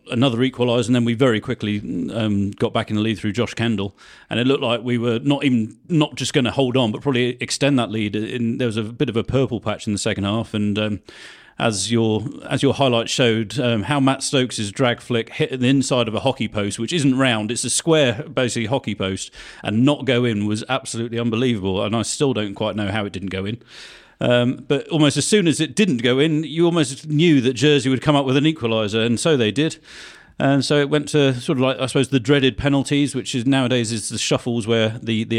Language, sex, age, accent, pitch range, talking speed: English, male, 40-59, British, 110-135 Hz, 240 wpm